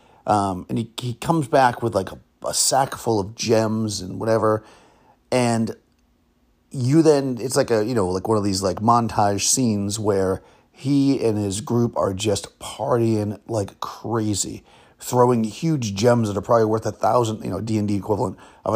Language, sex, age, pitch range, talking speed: English, male, 30-49, 100-120 Hz, 175 wpm